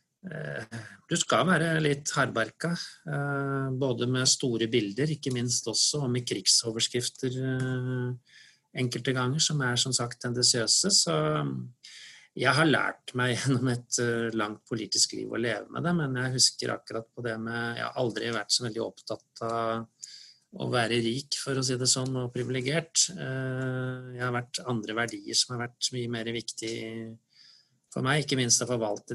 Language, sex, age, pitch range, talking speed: English, male, 30-49, 115-130 Hz, 160 wpm